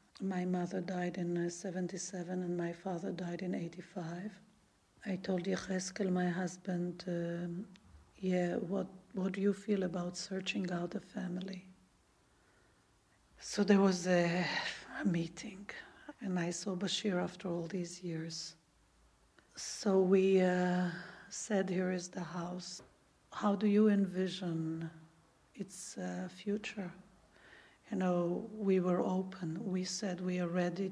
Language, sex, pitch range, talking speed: English, female, 175-195 Hz, 130 wpm